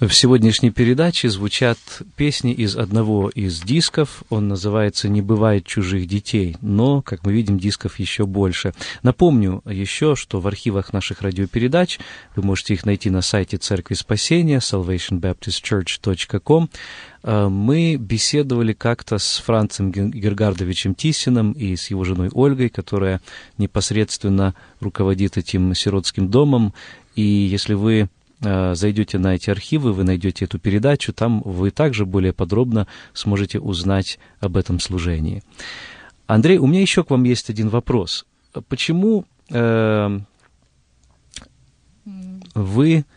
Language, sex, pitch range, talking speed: Russian, male, 100-120 Hz, 125 wpm